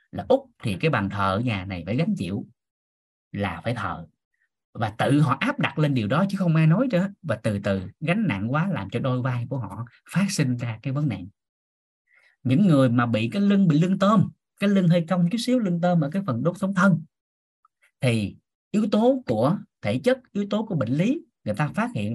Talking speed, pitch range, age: 225 wpm, 110-180 Hz, 20-39